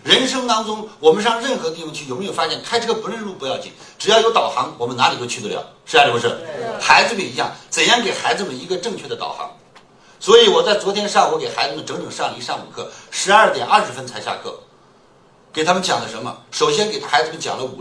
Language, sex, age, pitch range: Chinese, male, 60-79, 160-240 Hz